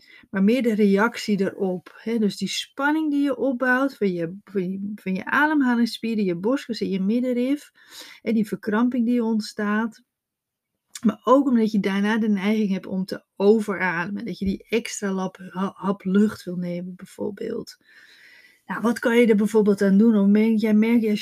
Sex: female